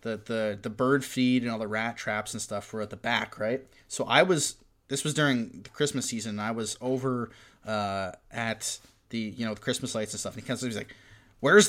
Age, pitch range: 20-39, 110-150 Hz